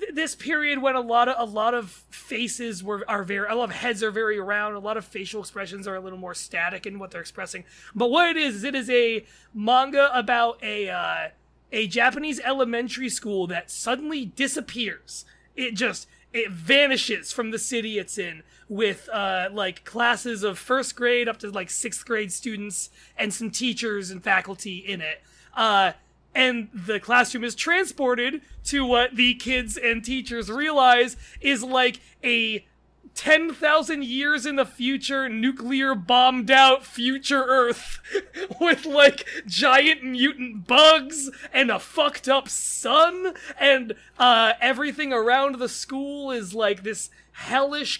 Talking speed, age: 160 wpm, 20-39